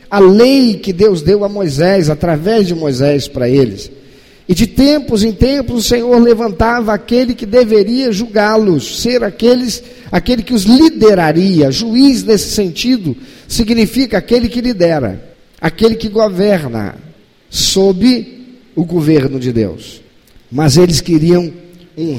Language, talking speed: Portuguese, 130 wpm